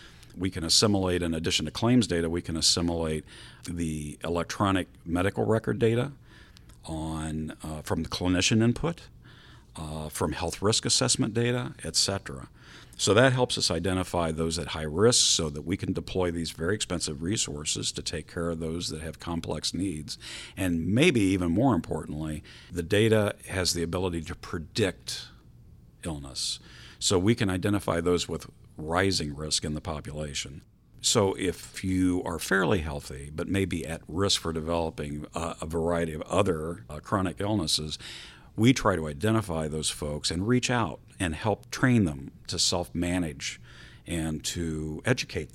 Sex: male